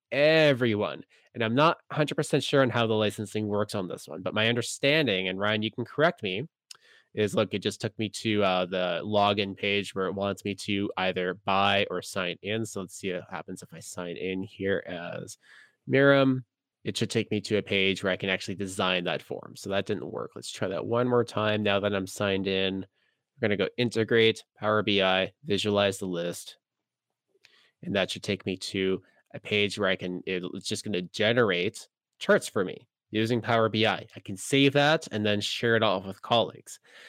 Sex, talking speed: male, 205 wpm